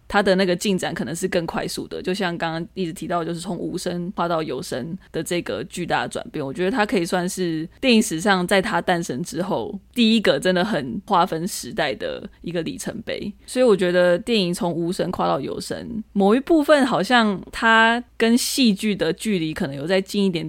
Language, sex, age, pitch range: Chinese, female, 20-39, 175-215 Hz